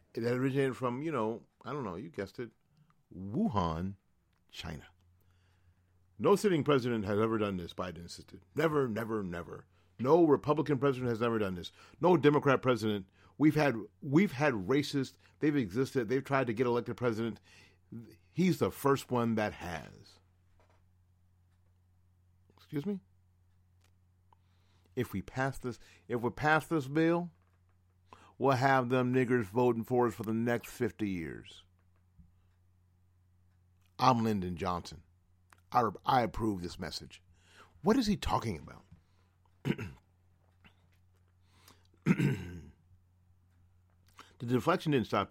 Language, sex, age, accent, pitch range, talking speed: English, male, 50-69, American, 90-125 Hz, 125 wpm